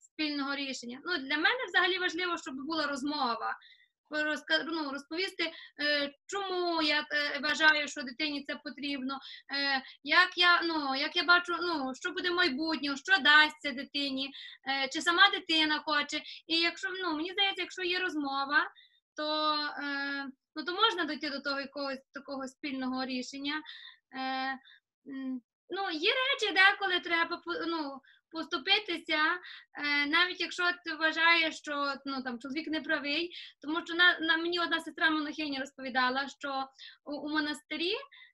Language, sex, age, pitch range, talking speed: Ukrainian, female, 20-39, 280-340 Hz, 140 wpm